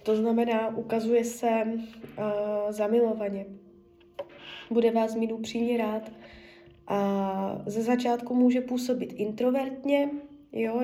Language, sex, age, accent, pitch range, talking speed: Czech, female, 20-39, native, 210-260 Hz, 95 wpm